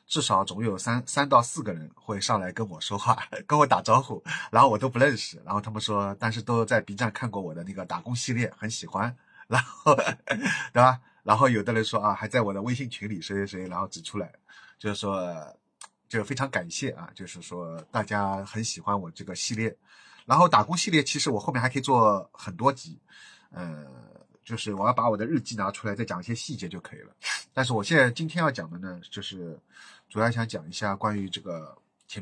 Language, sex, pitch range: Chinese, male, 100-125 Hz